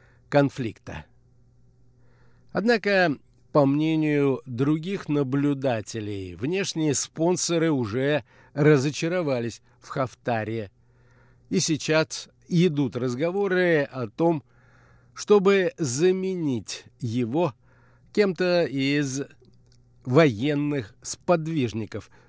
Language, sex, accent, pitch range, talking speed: Russian, male, native, 125-165 Hz, 65 wpm